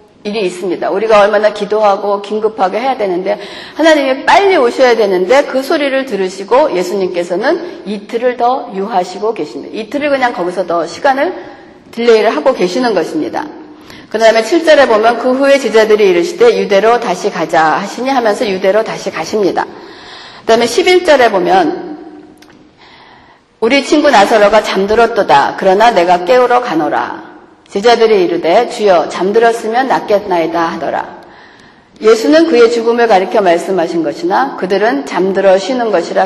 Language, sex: Korean, female